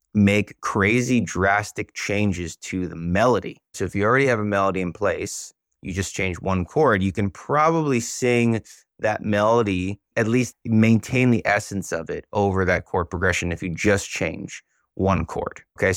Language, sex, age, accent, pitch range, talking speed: English, male, 30-49, American, 95-120 Hz, 170 wpm